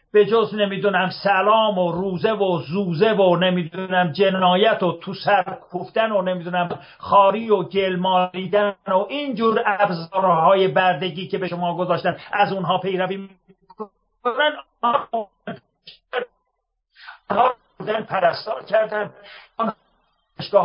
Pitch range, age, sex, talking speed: 185-230 Hz, 50-69, male, 110 wpm